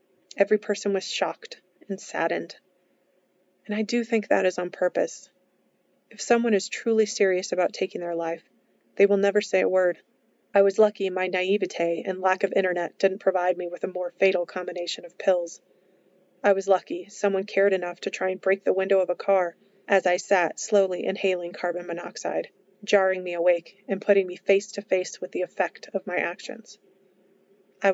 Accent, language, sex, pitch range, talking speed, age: American, English, female, 180-200 Hz, 185 wpm, 30-49